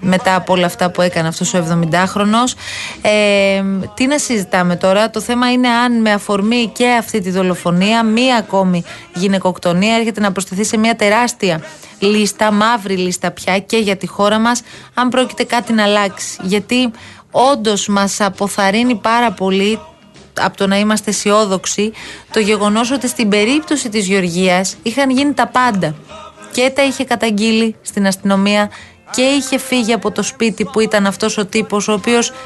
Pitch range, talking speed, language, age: 190-230 Hz, 160 wpm, Greek, 30-49